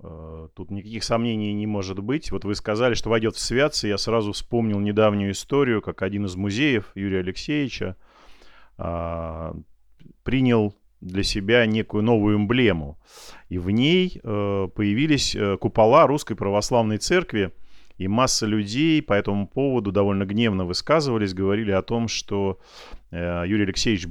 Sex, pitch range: male, 95-115 Hz